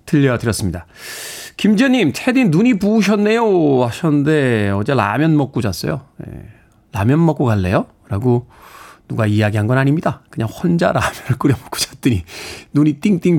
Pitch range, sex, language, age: 125-170 Hz, male, Korean, 40-59